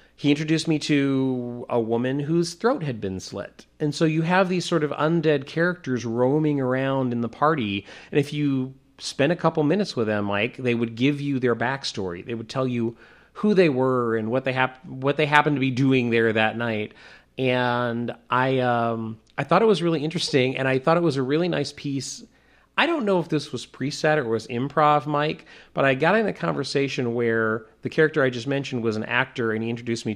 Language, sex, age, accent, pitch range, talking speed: English, male, 30-49, American, 120-155 Hz, 215 wpm